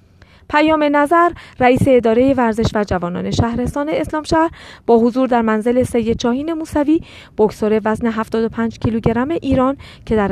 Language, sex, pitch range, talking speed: Persian, female, 200-255 Hz, 135 wpm